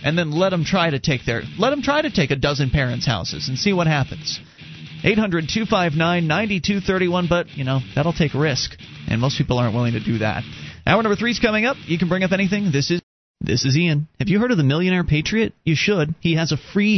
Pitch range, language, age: 145-190 Hz, English, 30-49